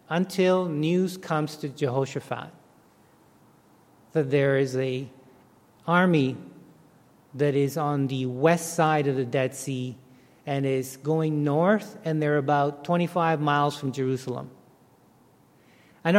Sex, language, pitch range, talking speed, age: male, English, 150-190 Hz, 120 wpm, 40-59